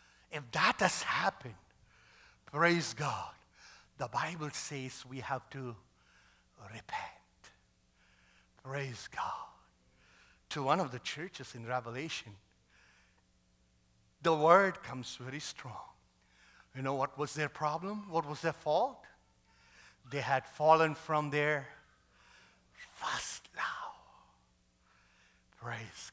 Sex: male